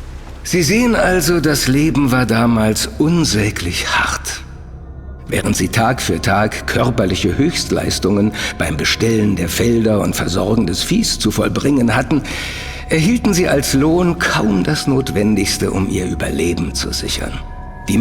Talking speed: 135 wpm